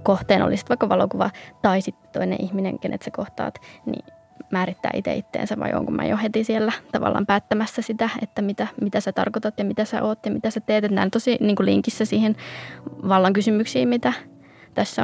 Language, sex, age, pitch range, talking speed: Finnish, female, 20-39, 190-220 Hz, 190 wpm